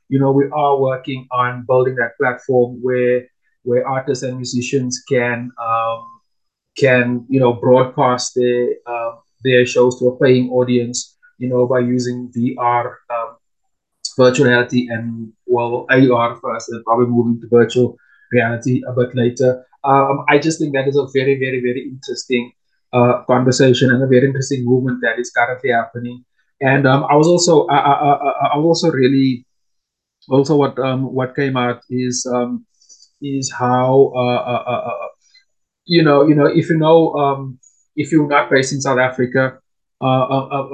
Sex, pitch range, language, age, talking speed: male, 125-135 Hz, English, 20-39, 160 wpm